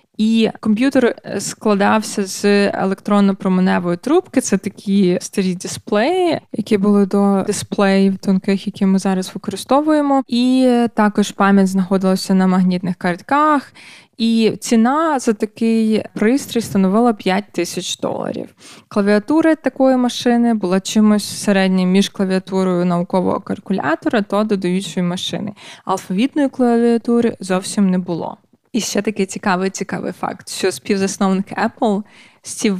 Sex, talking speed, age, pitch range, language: female, 115 wpm, 20-39, 195-235 Hz, Ukrainian